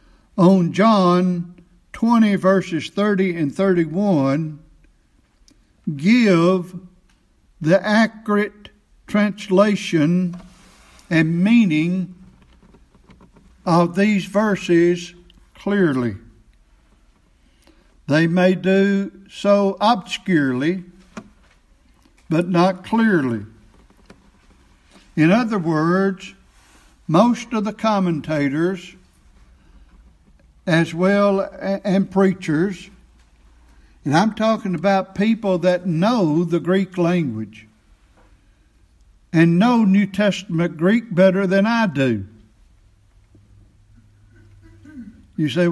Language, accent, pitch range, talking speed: English, American, 155-195 Hz, 75 wpm